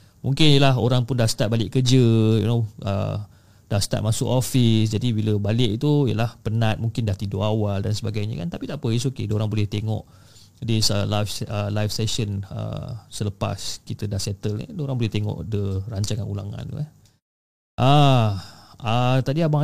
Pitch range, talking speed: 110-145 Hz, 185 wpm